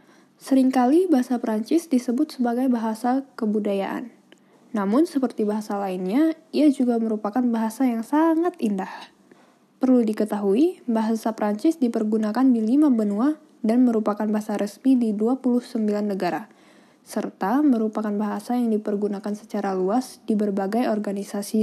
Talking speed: 120 wpm